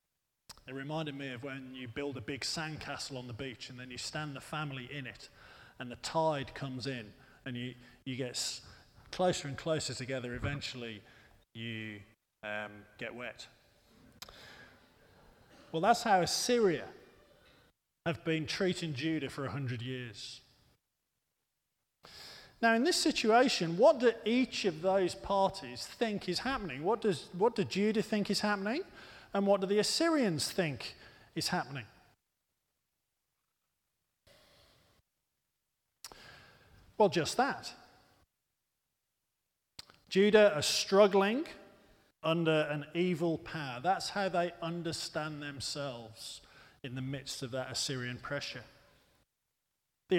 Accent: British